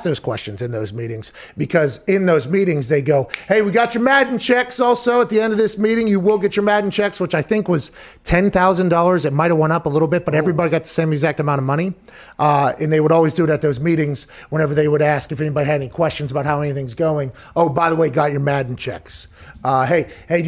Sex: male